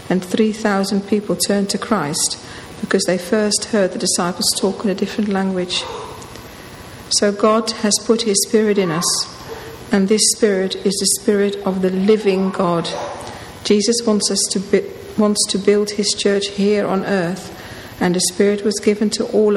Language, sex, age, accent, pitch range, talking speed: English, female, 50-69, British, 180-210 Hz, 170 wpm